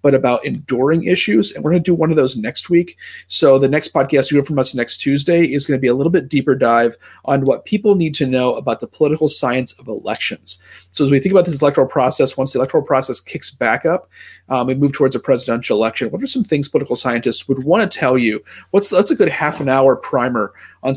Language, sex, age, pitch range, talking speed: English, male, 30-49, 120-155 Hz, 245 wpm